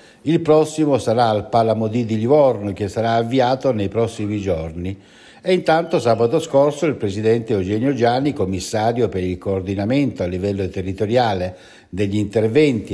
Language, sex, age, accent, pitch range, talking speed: Italian, male, 60-79, native, 100-140 Hz, 140 wpm